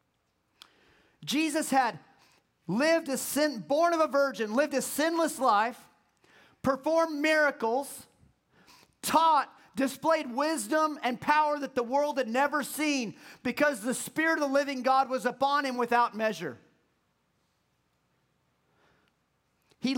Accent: American